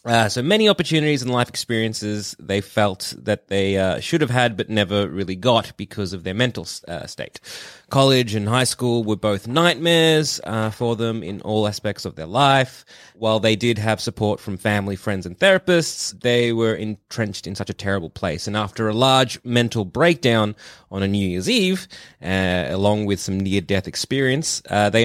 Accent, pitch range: Australian, 100-125 Hz